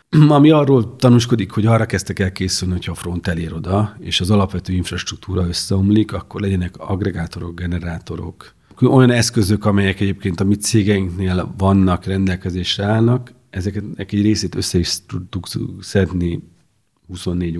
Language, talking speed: Hungarian, 135 wpm